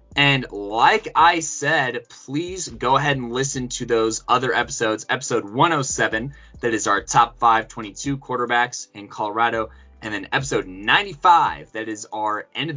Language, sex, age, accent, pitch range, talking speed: English, male, 20-39, American, 115-145 Hz, 150 wpm